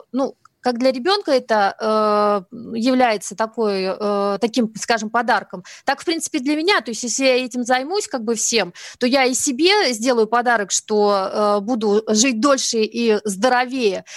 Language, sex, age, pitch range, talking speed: Russian, female, 30-49, 215-260 Hz, 165 wpm